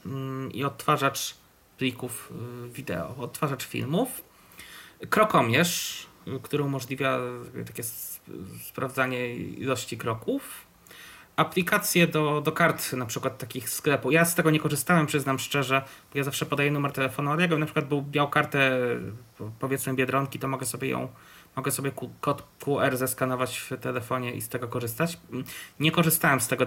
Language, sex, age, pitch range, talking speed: Polish, male, 20-39, 125-150 Hz, 140 wpm